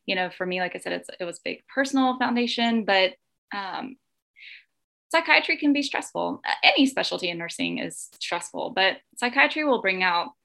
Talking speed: 170 wpm